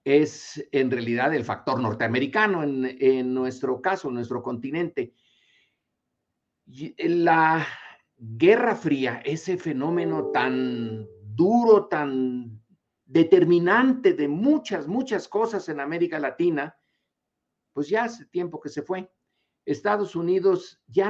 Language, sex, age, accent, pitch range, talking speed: Spanish, male, 50-69, Mexican, 135-200 Hz, 110 wpm